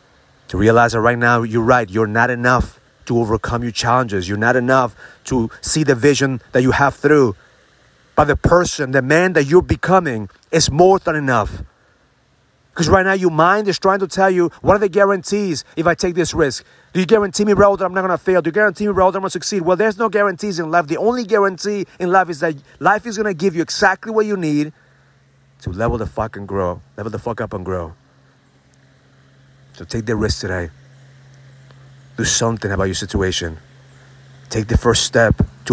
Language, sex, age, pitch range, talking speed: English, male, 30-49, 120-175 Hz, 215 wpm